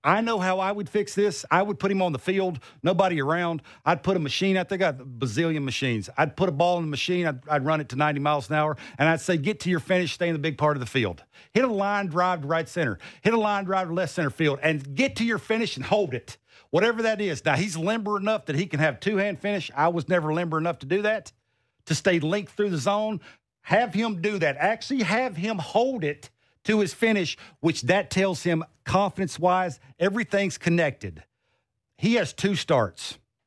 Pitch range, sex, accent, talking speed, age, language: 155-200 Hz, male, American, 235 wpm, 50-69, English